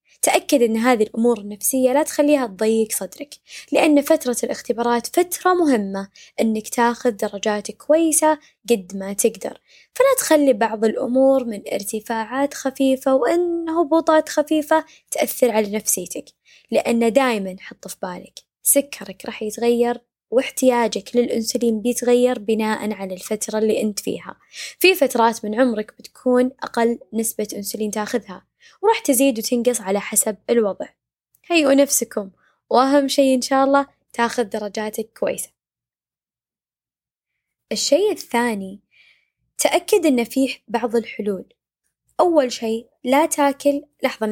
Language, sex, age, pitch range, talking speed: Arabic, female, 20-39, 220-280 Hz, 120 wpm